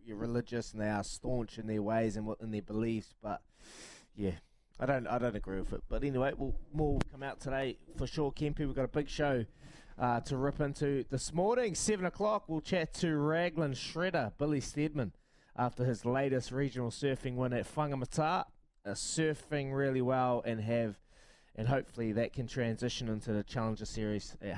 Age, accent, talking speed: 20-39, Australian, 190 wpm